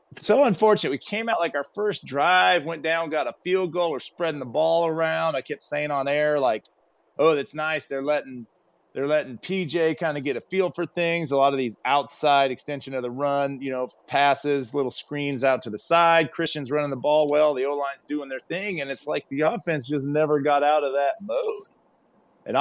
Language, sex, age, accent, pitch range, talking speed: English, male, 30-49, American, 135-170 Hz, 220 wpm